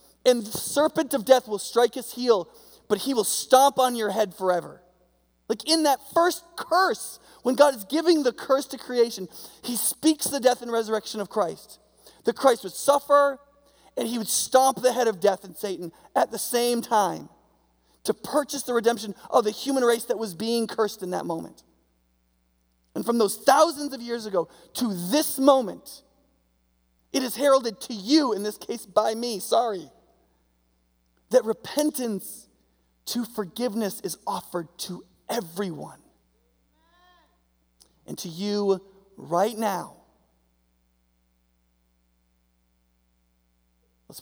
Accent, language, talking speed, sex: American, English, 145 wpm, male